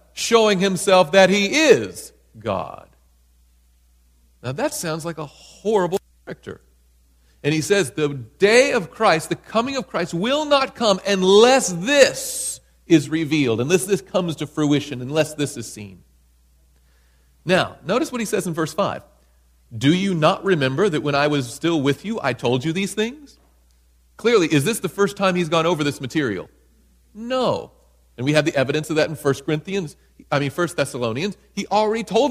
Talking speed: 170 wpm